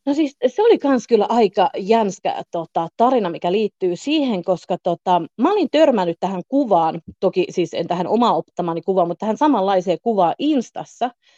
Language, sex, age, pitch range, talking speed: Finnish, female, 30-49, 175-240 Hz, 165 wpm